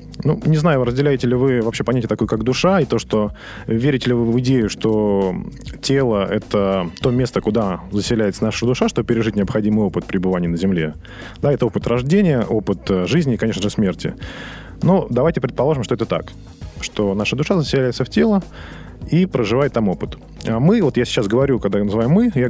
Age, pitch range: 20-39, 100-135 Hz